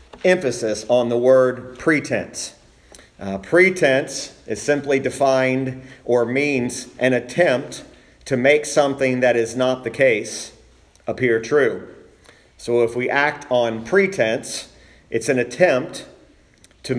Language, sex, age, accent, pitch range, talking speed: English, male, 40-59, American, 120-145 Hz, 120 wpm